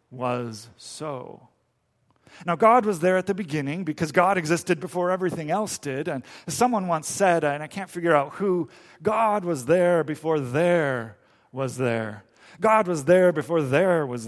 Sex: male